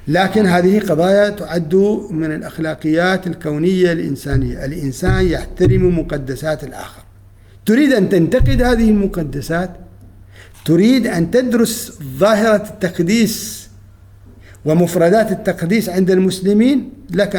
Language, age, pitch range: Arabic, 50-69, 130-200 Hz